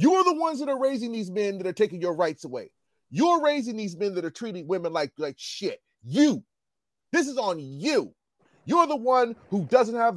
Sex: male